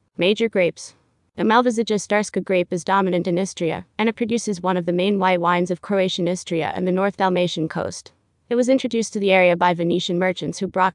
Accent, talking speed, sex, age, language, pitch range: American, 210 wpm, female, 20-39, English, 180-210 Hz